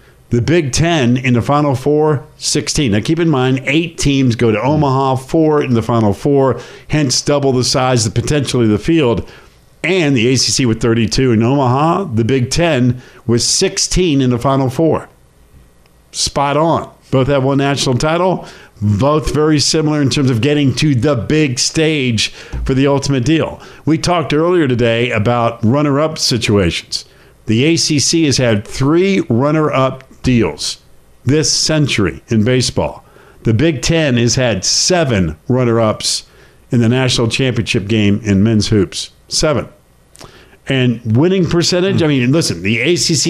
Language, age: English, 50-69